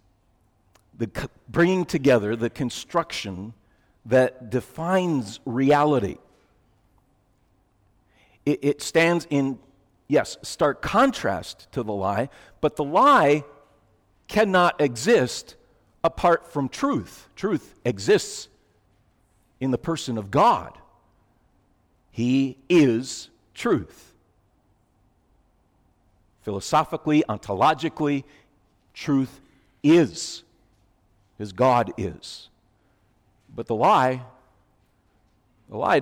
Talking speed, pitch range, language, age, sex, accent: 85 wpm, 100-135 Hz, English, 50-69, male, American